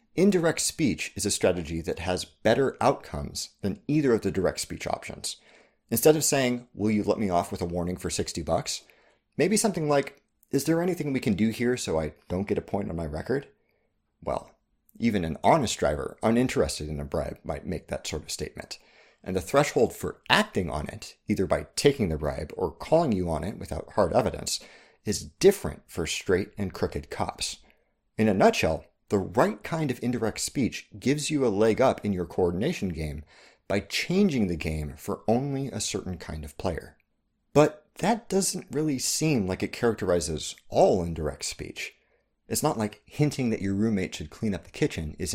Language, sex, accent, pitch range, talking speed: English, male, American, 85-130 Hz, 190 wpm